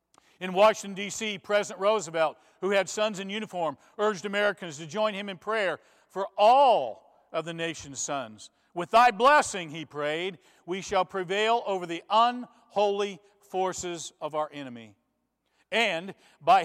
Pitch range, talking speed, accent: 165-215 Hz, 145 wpm, American